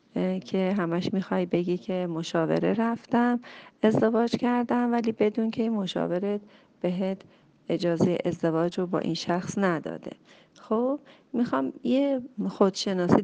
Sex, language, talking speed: female, Persian, 115 wpm